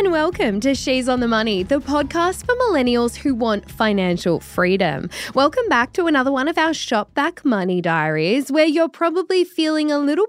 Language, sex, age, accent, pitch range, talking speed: English, female, 10-29, Australian, 195-300 Hz, 180 wpm